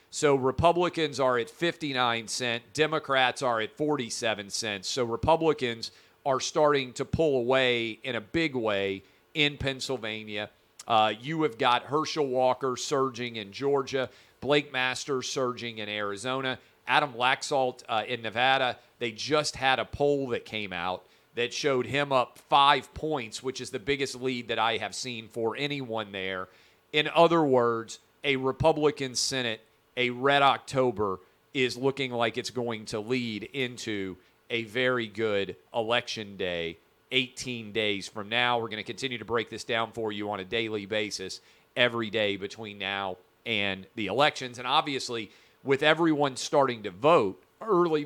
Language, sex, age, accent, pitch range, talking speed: English, male, 40-59, American, 110-135 Hz, 155 wpm